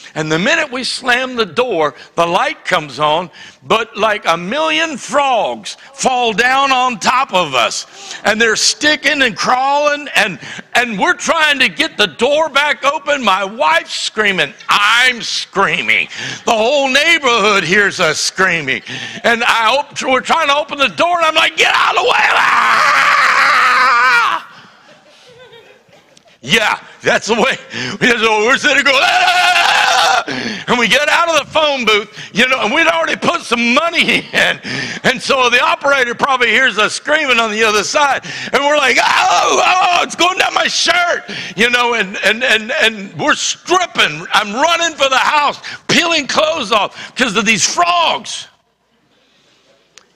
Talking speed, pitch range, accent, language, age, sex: 160 wpm, 225-315 Hz, American, English, 60-79, male